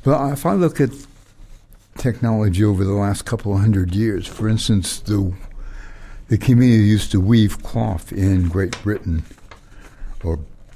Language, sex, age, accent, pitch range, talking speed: English, male, 60-79, American, 95-125 Hz, 145 wpm